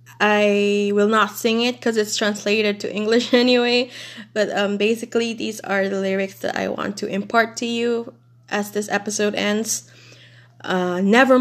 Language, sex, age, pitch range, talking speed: English, female, 20-39, 180-230 Hz, 165 wpm